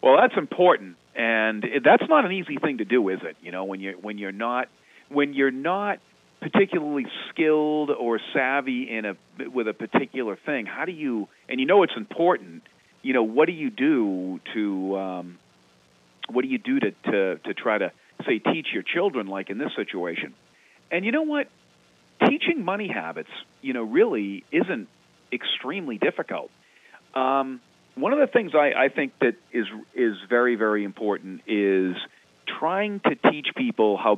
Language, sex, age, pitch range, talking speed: English, male, 40-59, 95-150 Hz, 175 wpm